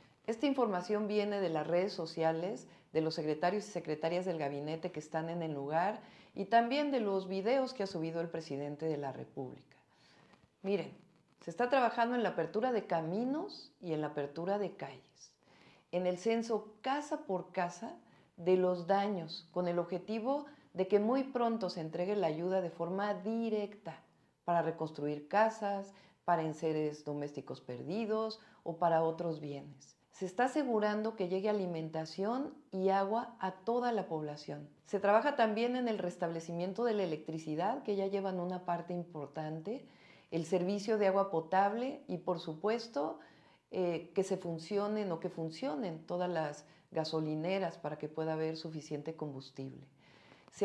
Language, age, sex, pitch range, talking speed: Spanish, 40-59, female, 160-215 Hz, 160 wpm